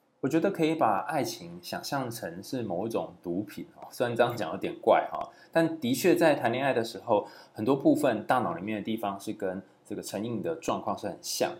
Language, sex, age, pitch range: Chinese, male, 20-39, 105-160 Hz